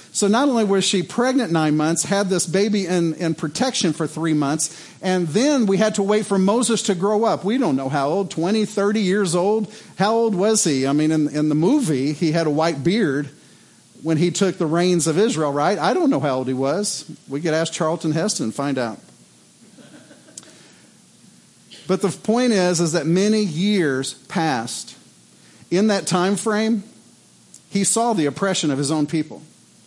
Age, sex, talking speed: 50-69, male, 195 wpm